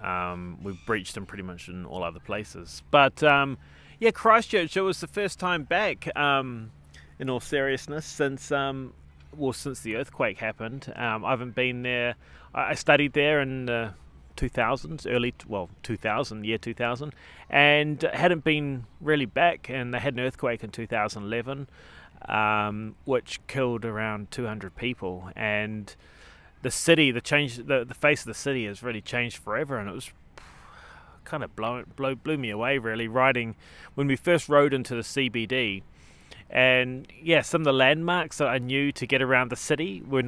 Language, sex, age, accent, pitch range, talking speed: English, male, 30-49, Australian, 105-140 Hz, 170 wpm